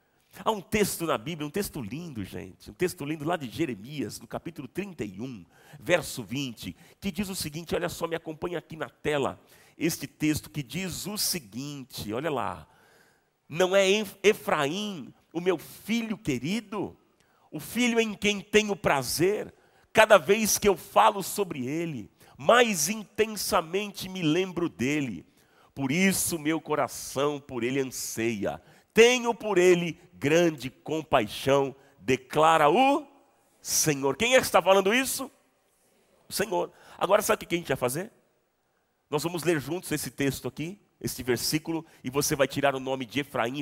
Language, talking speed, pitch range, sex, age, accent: Portuguese, 155 wpm, 140-210 Hz, male, 40-59, Brazilian